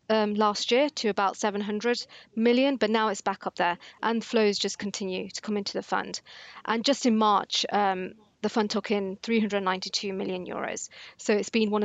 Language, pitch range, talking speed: English, 200-225 Hz, 190 wpm